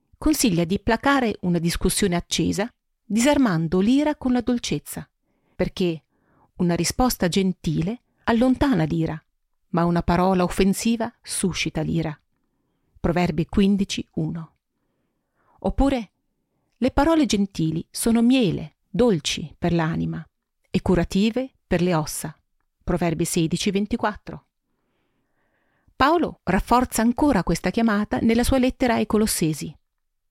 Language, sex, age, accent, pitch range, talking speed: Italian, female, 40-59, native, 175-240 Hz, 105 wpm